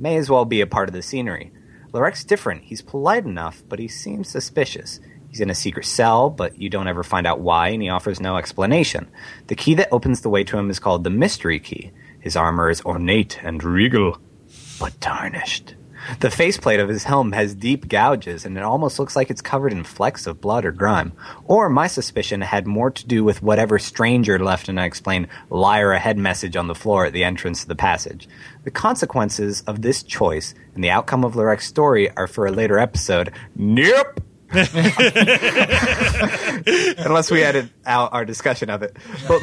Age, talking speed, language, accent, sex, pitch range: 30-49, 195 wpm, English, American, male, 95-130 Hz